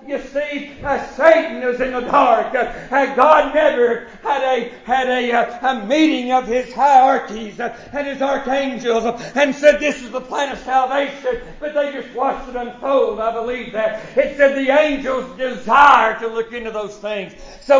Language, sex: English, male